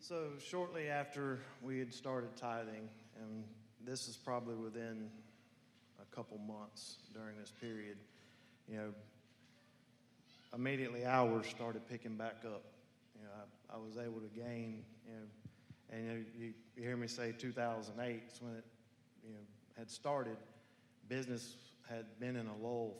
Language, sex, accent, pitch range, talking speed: English, male, American, 110-125 Hz, 145 wpm